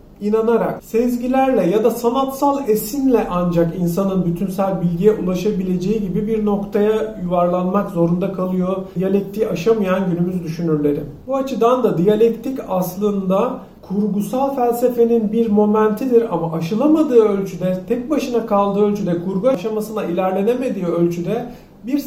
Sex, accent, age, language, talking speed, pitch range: male, native, 40-59, Turkish, 115 wpm, 190-235 Hz